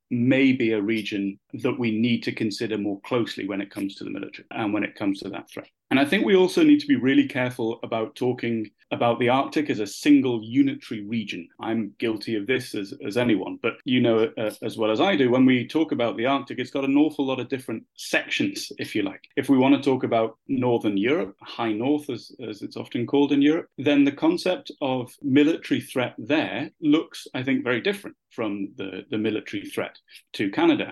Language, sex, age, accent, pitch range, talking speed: English, male, 30-49, British, 110-155 Hz, 220 wpm